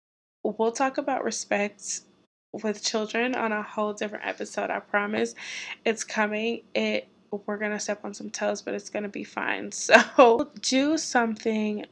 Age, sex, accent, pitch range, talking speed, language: 20-39, female, American, 200-225 Hz, 160 wpm, English